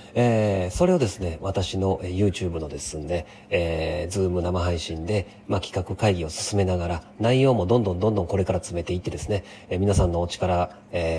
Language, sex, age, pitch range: Japanese, male, 40-59, 85-105 Hz